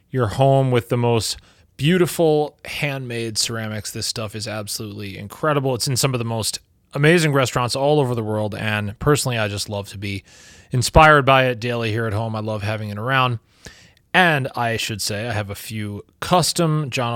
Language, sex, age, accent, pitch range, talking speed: English, male, 30-49, American, 105-130 Hz, 190 wpm